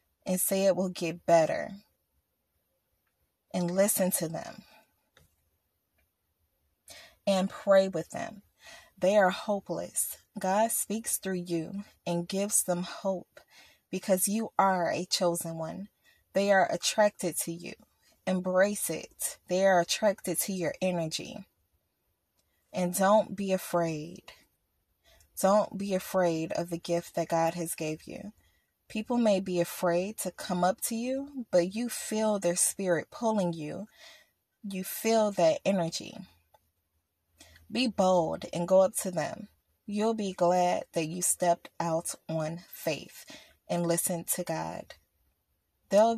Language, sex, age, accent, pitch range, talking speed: English, female, 20-39, American, 165-200 Hz, 130 wpm